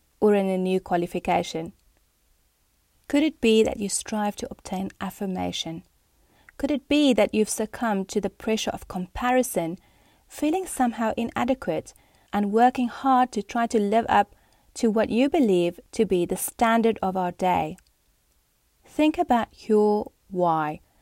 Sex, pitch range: female, 185-245 Hz